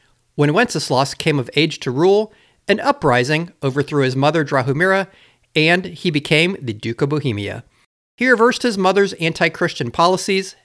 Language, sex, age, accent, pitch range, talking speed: English, male, 40-59, American, 125-170 Hz, 150 wpm